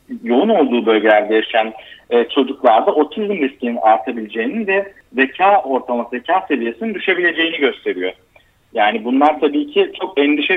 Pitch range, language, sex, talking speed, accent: 125-180 Hz, Turkish, male, 120 wpm, native